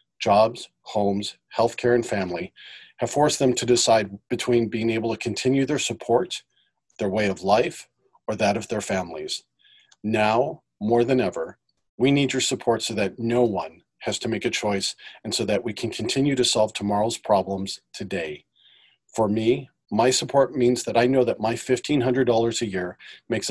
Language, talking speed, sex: English, 175 wpm, male